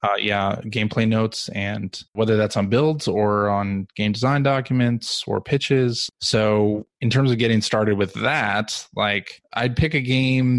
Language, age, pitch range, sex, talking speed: English, 20-39, 105-120 Hz, male, 165 wpm